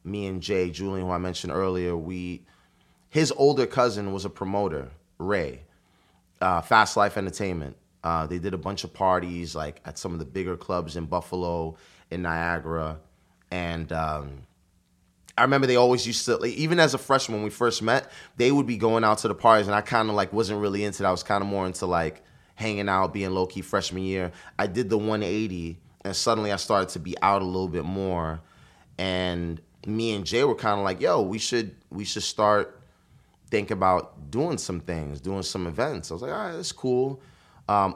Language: English